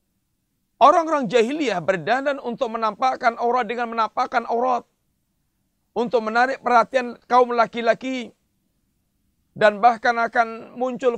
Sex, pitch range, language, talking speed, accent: male, 220-245 Hz, Indonesian, 95 wpm, native